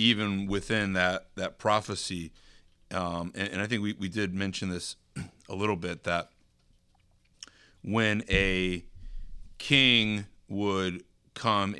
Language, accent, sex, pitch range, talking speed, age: English, American, male, 90-105 Hz, 120 wpm, 30-49